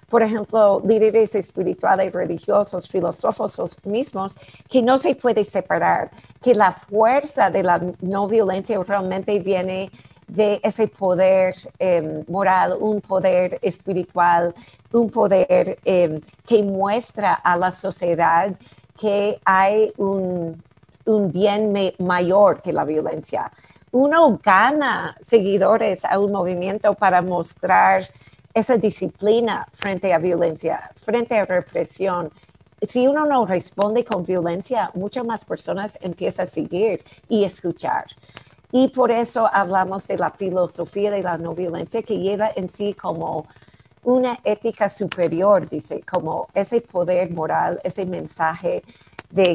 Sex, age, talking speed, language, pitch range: female, 50-69, 125 wpm, Spanish, 175-215 Hz